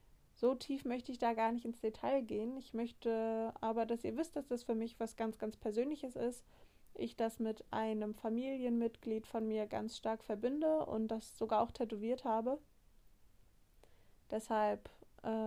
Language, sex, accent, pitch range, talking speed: German, female, German, 215-245 Hz, 165 wpm